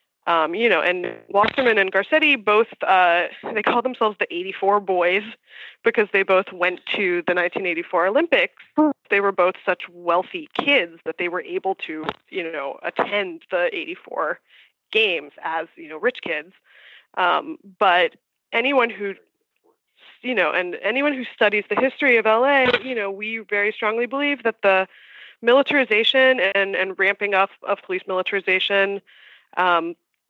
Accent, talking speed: American, 150 wpm